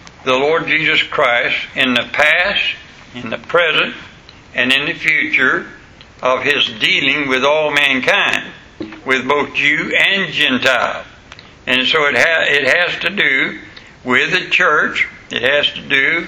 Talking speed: 145 wpm